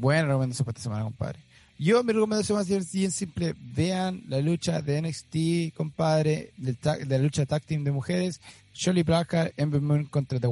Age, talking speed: 30-49, 195 wpm